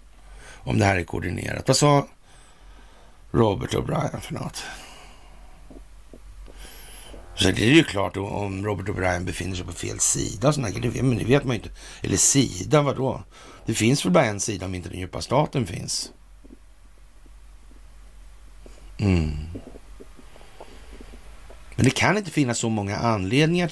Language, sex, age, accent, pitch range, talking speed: Swedish, male, 60-79, native, 85-130 Hz, 135 wpm